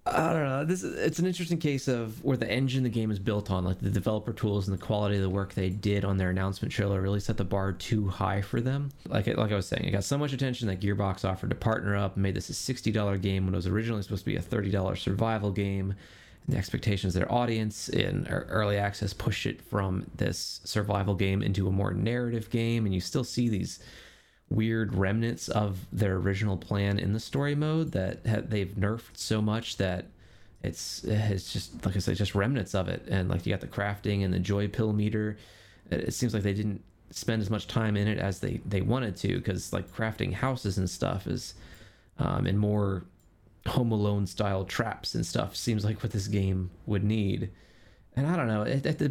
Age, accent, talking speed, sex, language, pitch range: 20-39, American, 225 wpm, male, English, 95-115 Hz